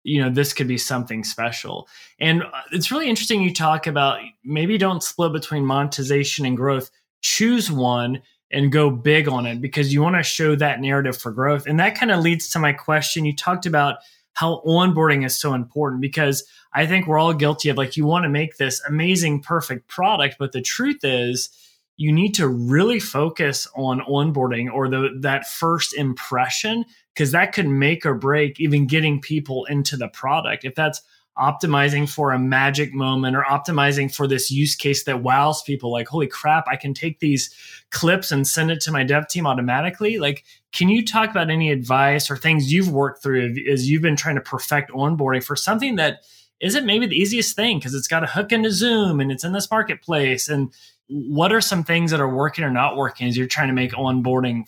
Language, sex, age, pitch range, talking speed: English, male, 20-39, 135-165 Hz, 205 wpm